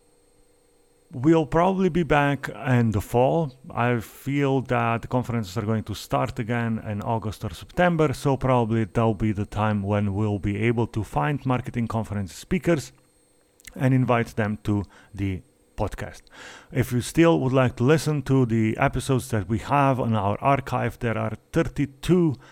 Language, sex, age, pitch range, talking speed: English, male, 30-49, 110-140 Hz, 165 wpm